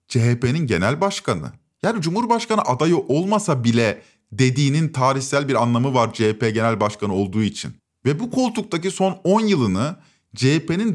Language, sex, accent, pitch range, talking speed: Turkish, male, native, 135-200 Hz, 135 wpm